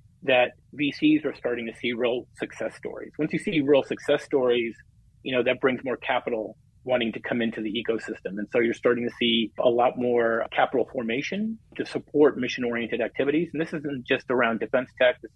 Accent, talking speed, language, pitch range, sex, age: American, 195 wpm, English, 120-150 Hz, male, 30-49